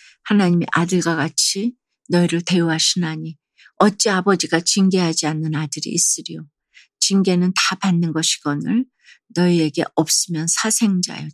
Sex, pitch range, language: female, 165-205 Hz, Korean